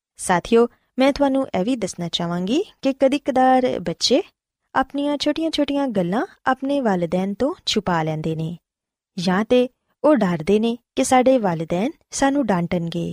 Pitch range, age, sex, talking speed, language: 180-255 Hz, 20-39, female, 135 wpm, Punjabi